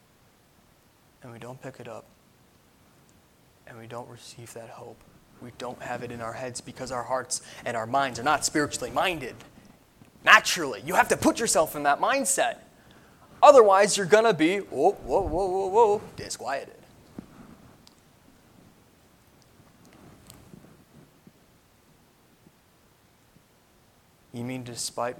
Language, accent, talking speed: English, American, 125 wpm